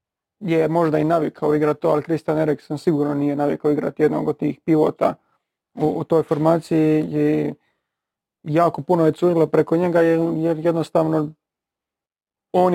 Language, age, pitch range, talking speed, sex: Croatian, 30-49, 150-160 Hz, 145 wpm, male